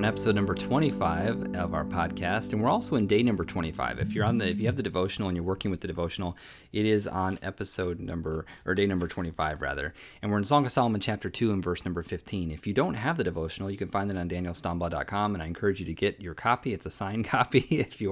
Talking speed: 250 wpm